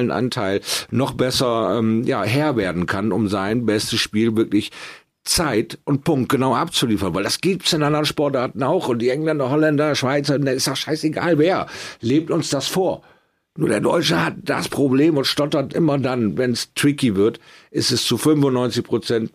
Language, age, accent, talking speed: German, 50-69, German, 175 wpm